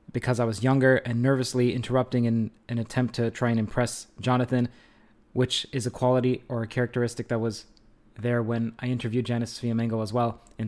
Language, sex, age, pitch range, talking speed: English, male, 20-39, 115-130 Hz, 185 wpm